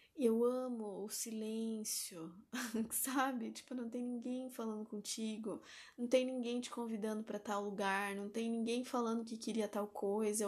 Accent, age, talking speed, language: Brazilian, 10-29, 160 wpm, Portuguese